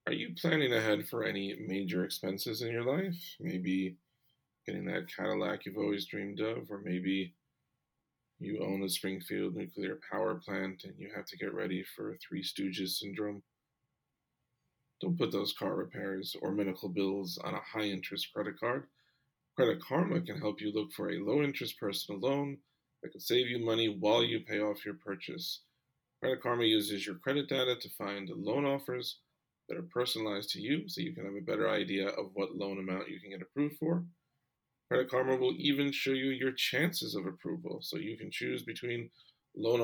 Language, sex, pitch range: English, male, 100-140 Hz